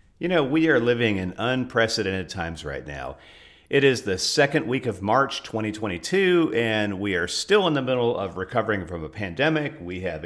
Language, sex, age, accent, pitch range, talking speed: English, male, 50-69, American, 100-145 Hz, 185 wpm